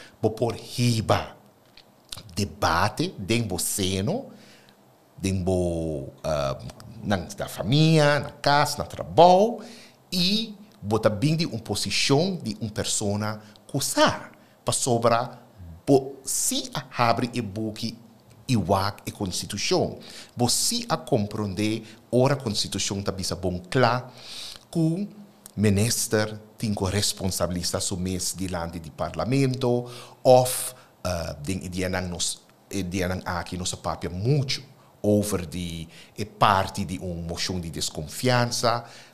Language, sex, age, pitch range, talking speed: Spanish, male, 60-79, 95-125 Hz, 120 wpm